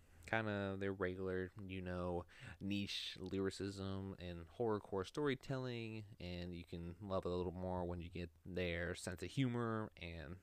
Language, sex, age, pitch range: English, male, 20-39, 85-100 Hz